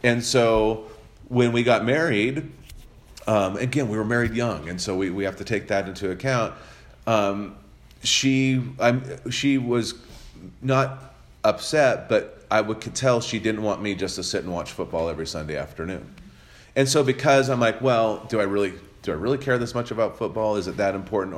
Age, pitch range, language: 40-59, 95-130 Hz, English